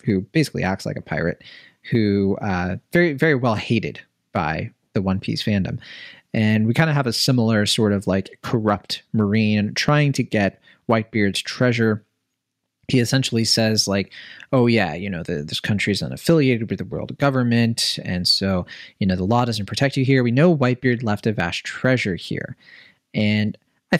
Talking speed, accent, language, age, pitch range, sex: 180 wpm, American, English, 30-49, 105-145 Hz, male